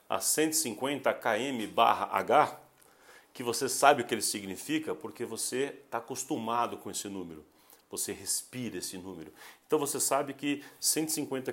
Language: Portuguese